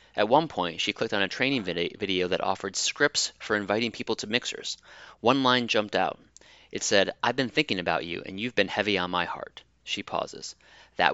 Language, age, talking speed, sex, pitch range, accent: English, 30-49, 205 wpm, male, 95-120 Hz, American